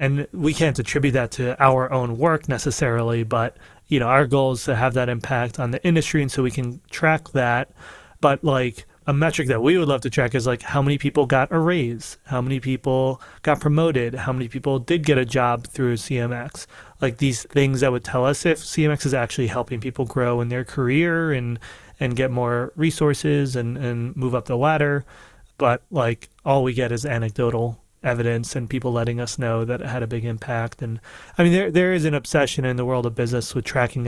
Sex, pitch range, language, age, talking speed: male, 120-145 Hz, English, 30-49, 215 wpm